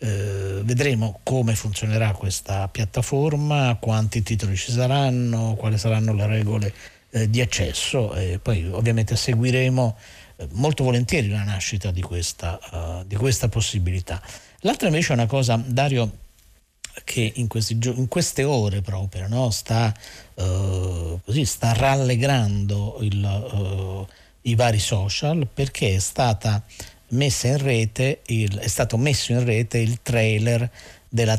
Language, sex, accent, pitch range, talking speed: Italian, male, native, 100-120 Hz, 130 wpm